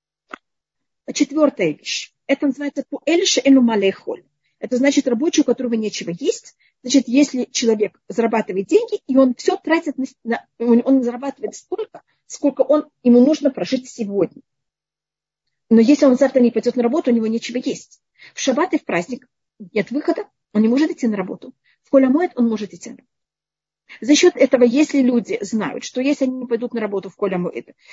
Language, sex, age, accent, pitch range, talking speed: Russian, female, 40-59, native, 230-290 Hz, 170 wpm